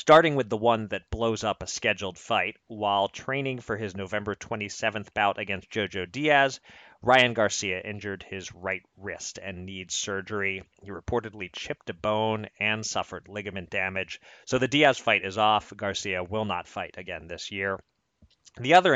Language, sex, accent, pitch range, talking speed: English, male, American, 95-115 Hz, 170 wpm